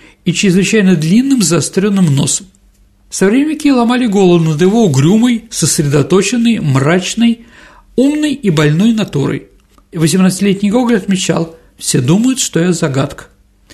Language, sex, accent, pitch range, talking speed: Russian, male, native, 160-230 Hz, 120 wpm